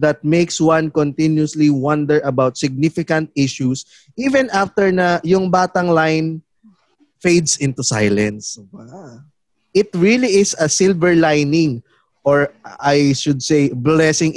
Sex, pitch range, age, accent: male, 145-185 Hz, 20-39, native